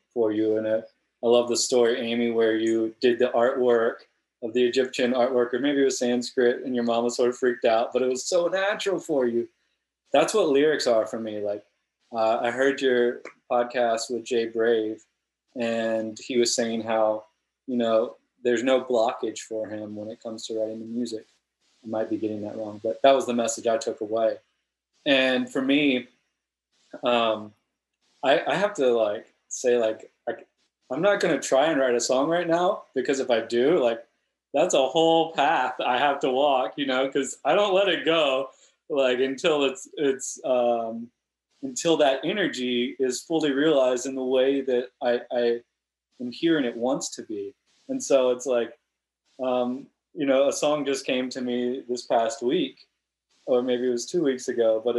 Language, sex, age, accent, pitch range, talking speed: English, male, 20-39, American, 115-135 Hz, 190 wpm